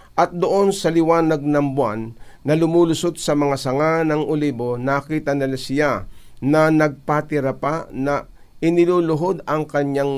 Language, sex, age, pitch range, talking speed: Filipino, male, 50-69, 140-175 Hz, 135 wpm